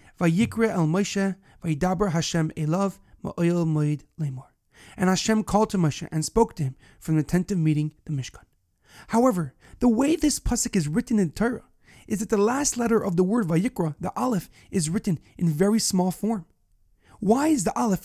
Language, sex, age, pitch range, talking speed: English, male, 30-49, 160-215 Hz, 165 wpm